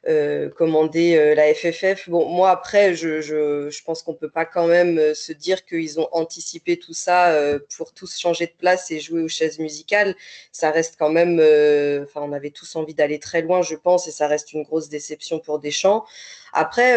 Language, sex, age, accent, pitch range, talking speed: French, female, 20-39, French, 155-180 Hz, 210 wpm